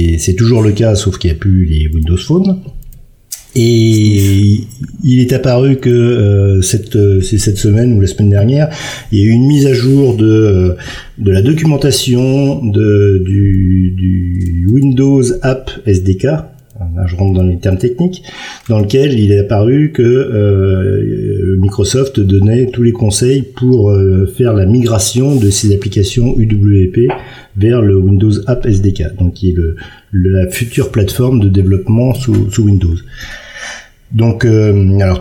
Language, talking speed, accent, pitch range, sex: French, 160 wpm, French, 95-120 Hz, male